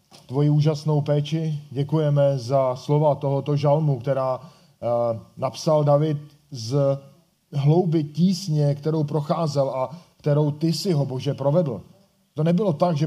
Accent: native